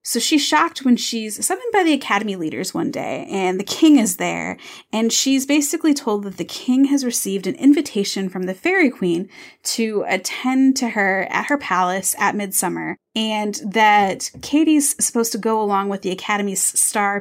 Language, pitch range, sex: English, 190-240 Hz, female